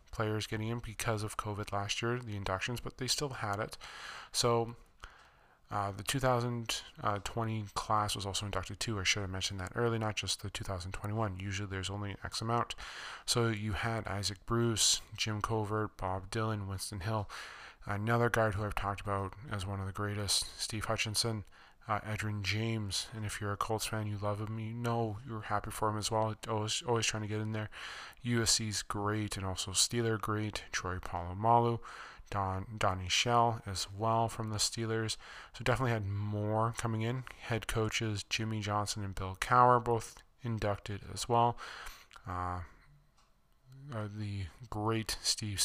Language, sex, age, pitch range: English, male, 20-39, 100-115 Hz